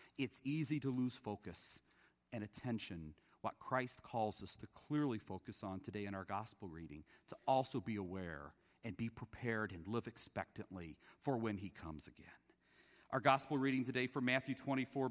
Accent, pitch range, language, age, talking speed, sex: American, 110-140 Hz, English, 40-59, 165 wpm, male